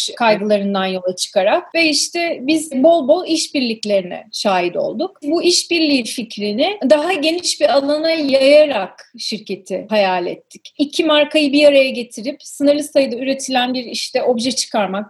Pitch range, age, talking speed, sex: 215-300 Hz, 30-49, 135 wpm, female